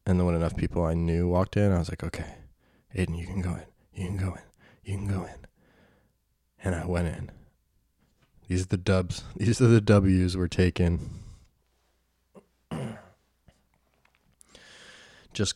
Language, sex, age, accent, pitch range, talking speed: English, male, 20-39, American, 85-105 Hz, 160 wpm